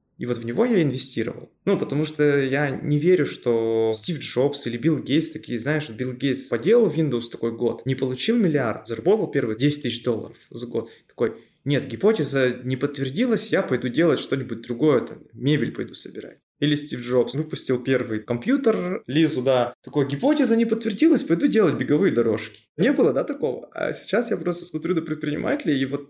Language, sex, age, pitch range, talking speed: Russian, male, 20-39, 125-160 Hz, 180 wpm